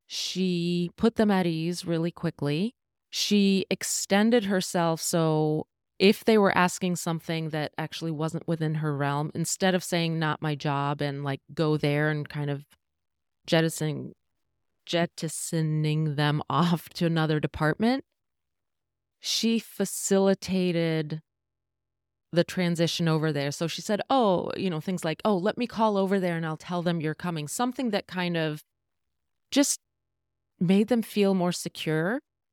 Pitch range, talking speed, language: 155-180 Hz, 145 wpm, English